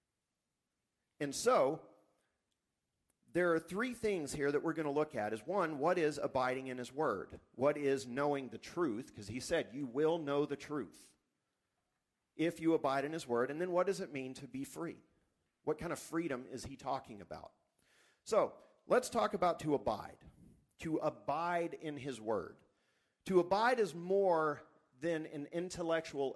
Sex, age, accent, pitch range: male, 50-69, American, 140-180 Hz